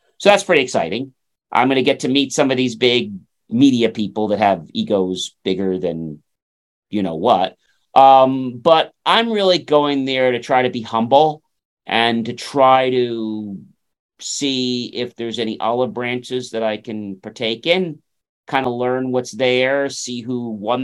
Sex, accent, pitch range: male, American, 115-170 Hz